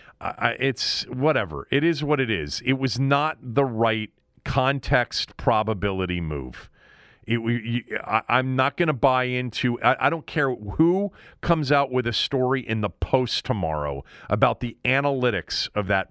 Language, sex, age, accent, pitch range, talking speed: English, male, 40-59, American, 105-140 Hz, 150 wpm